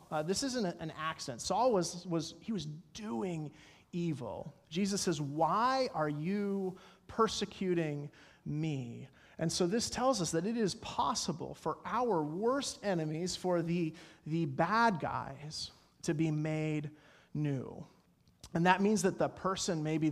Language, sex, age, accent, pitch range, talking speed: English, male, 30-49, American, 155-195 Hz, 145 wpm